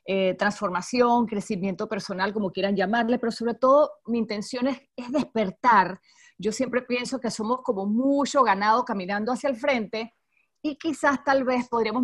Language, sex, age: Spanish, female, 30-49